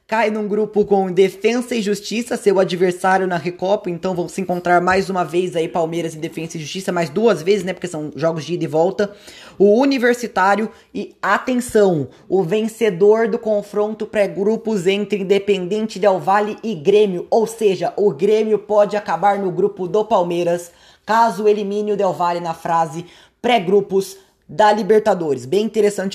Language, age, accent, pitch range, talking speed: Portuguese, 20-39, Brazilian, 185-225 Hz, 165 wpm